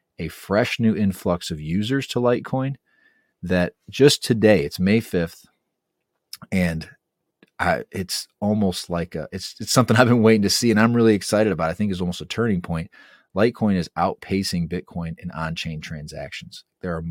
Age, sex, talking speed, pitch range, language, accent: 30-49, male, 170 wpm, 90-110 Hz, English, American